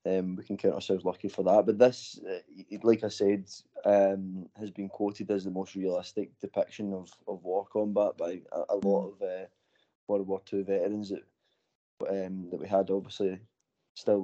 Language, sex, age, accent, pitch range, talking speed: English, male, 20-39, British, 95-110 Hz, 185 wpm